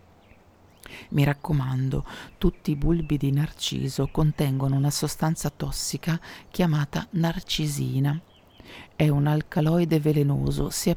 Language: Italian